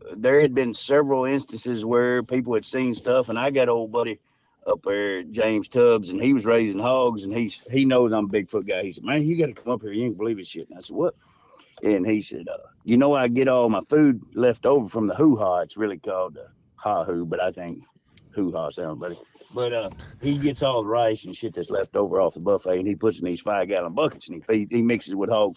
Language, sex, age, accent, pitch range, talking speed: English, male, 50-69, American, 110-145 Hz, 255 wpm